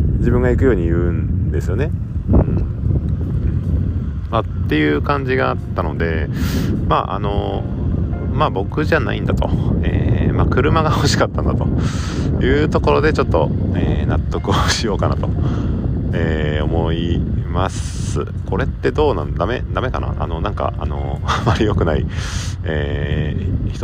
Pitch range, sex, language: 85-100 Hz, male, Japanese